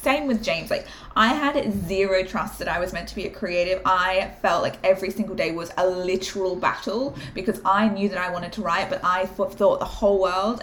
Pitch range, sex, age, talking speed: 180-210 Hz, female, 20-39, 225 wpm